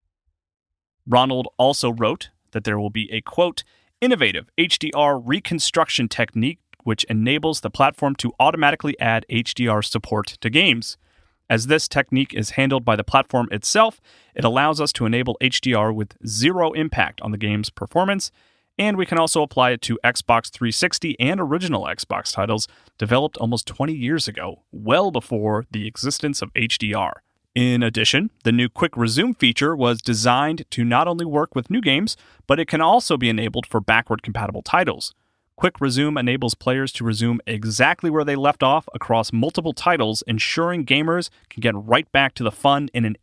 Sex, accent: male, American